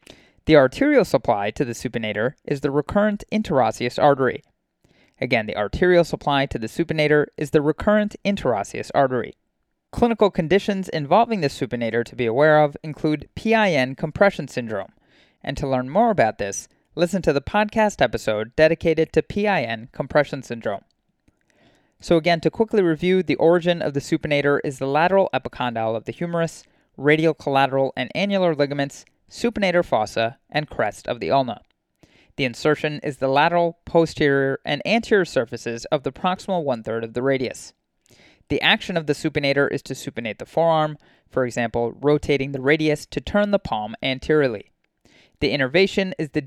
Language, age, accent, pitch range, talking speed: English, 20-39, American, 130-175 Hz, 155 wpm